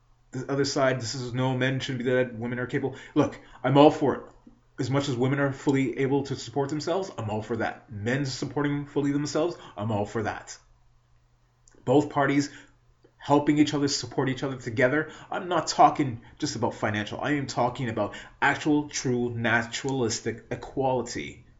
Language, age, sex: English, 30-49, male